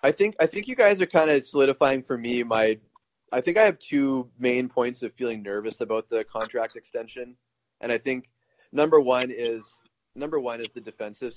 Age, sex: 30-49, male